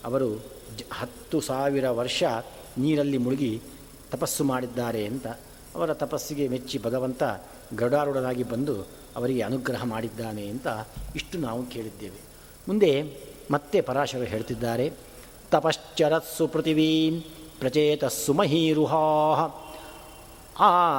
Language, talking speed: Kannada, 95 wpm